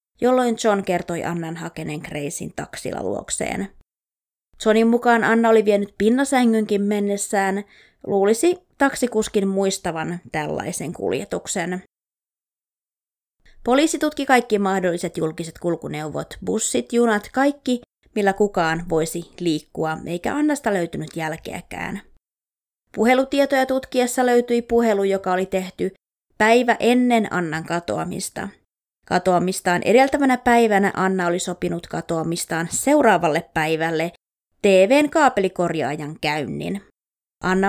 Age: 20-39